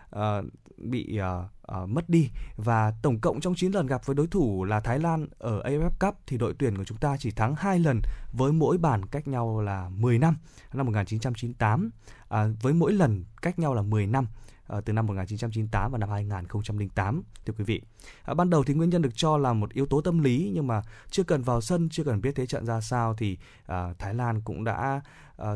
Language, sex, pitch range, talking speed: Vietnamese, male, 105-140 Hz, 225 wpm